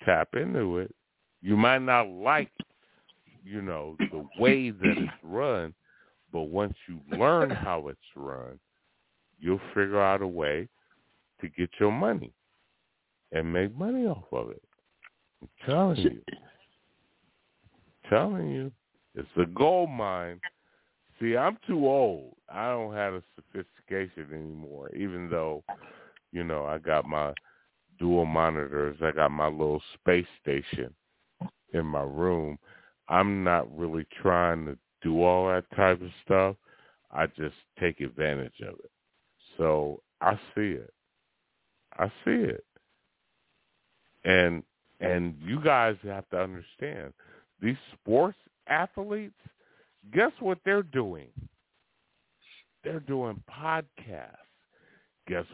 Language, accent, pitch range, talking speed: English, American, 80-115 Hz, 125 wpm